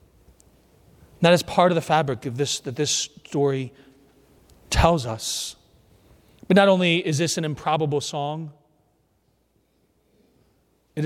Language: English